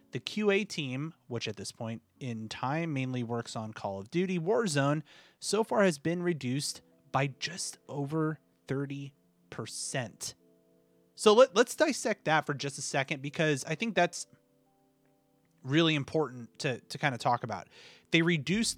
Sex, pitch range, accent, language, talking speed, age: male, 120-170 Hz, American, English, 150 wpm, 30-49